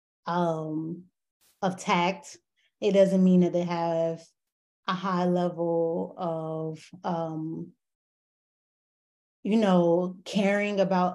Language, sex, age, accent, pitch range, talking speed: English, female, 20-39, American, 170-200 Hz, 95 wpm